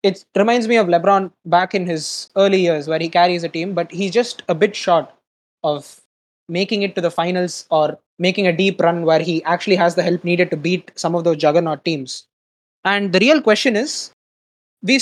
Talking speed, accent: 210 wpm, Indian